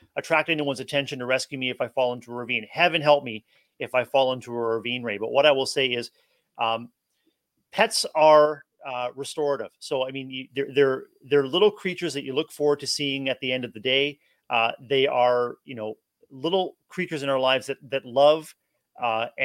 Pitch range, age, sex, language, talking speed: 125-150 Hz, 30-49, male, English, 210 wpm